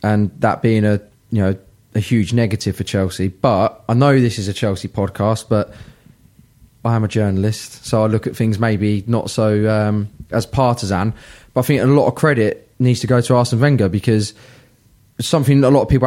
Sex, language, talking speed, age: male, English, 205 wpm, 20-39